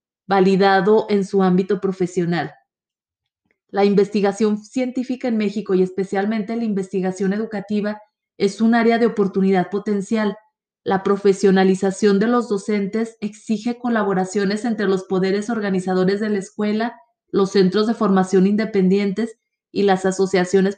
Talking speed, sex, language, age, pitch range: 125 wpm, female, Spanish, 30-49, 190-220 Hz